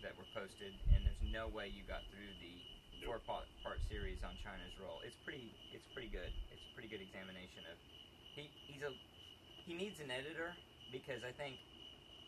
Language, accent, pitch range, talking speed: English, American, 90-115 Hz, 180 wpm